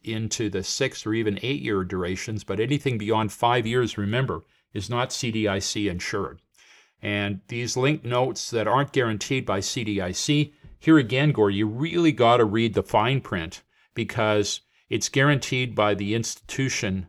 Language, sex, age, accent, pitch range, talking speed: English, male, 50-69, American, 100-130 Hz, 150 wpm